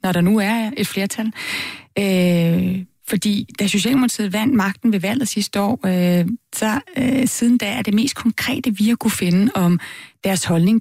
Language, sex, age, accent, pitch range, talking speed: Danish, female, 30-49, native, 185-240 Hz, 180 wpm